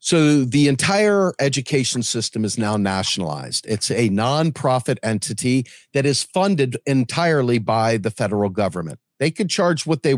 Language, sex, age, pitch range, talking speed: English, male, 40-59, 125-160 Hz, 145 wpm